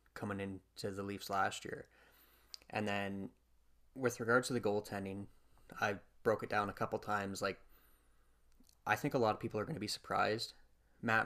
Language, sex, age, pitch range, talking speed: English, male, 20-39, 100-110 Hz, 175 wpm